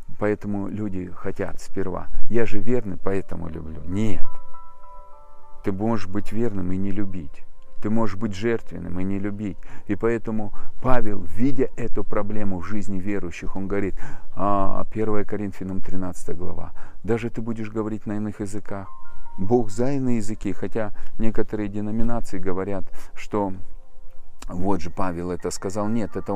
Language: Russian